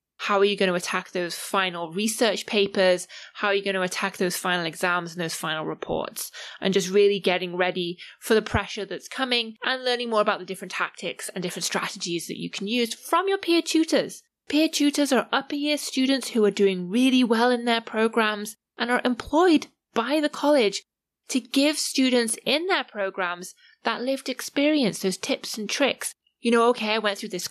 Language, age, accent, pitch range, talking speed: English, 20-39, British, 185-255 Hz, 200 wpm